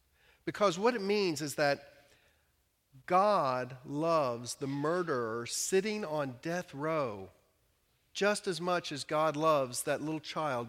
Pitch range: 130-185 Hz